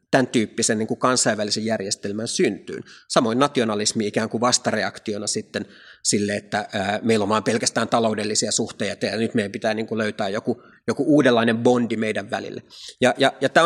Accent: native